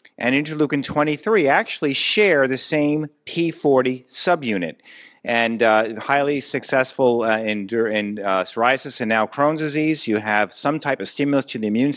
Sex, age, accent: male, 50-69, American